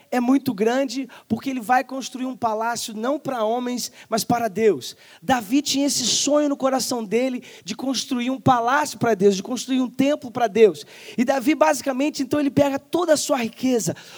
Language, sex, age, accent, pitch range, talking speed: Portuguese, male, 20-39, Brazilian, 230-275 Hz, 185 wpm